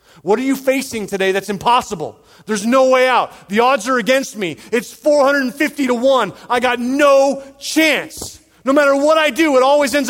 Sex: male